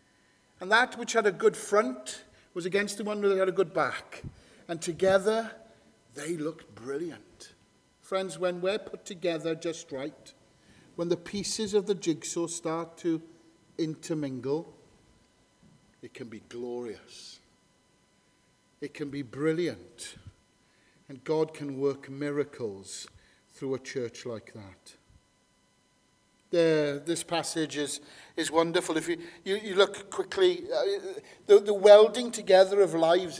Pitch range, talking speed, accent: 160-220 Hz, 135 wpm, British